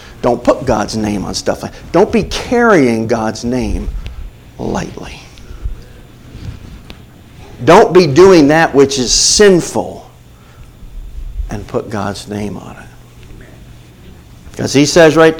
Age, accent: 50-69, American